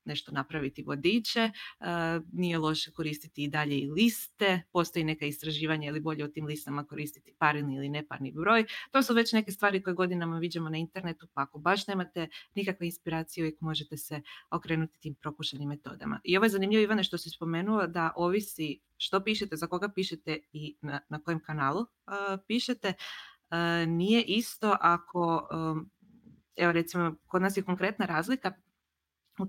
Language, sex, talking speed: Croatian, female, 165 wpm